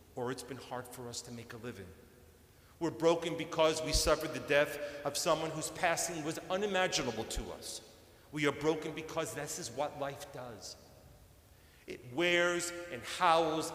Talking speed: 165 wpm